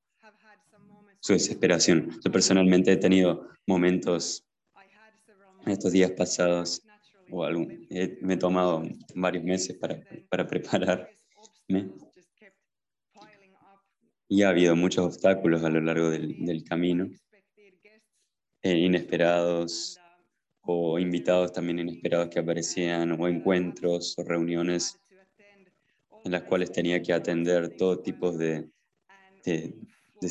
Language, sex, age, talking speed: English, male, 20-39, 110 wpm